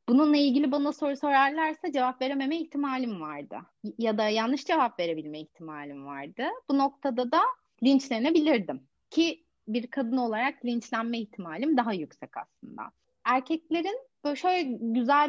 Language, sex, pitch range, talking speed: Turkish, female, 215-280 Hz, 130 wpm